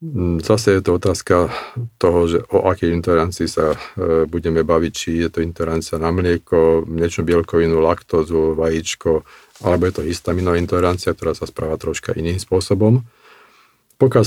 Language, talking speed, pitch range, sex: Slovak, 145 wpm, 85-100 Hz, male